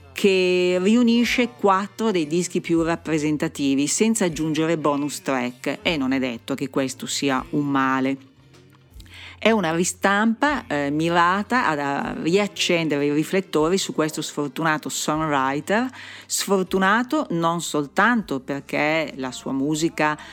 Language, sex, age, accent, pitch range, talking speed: Italian, female, 40-59, native, 140-180 Hz, 120 wpm